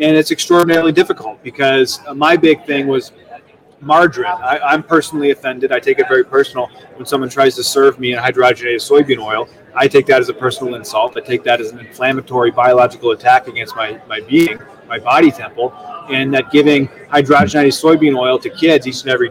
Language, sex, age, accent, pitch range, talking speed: English, male, 30-49, American, 135-190 Hz, 190 wpm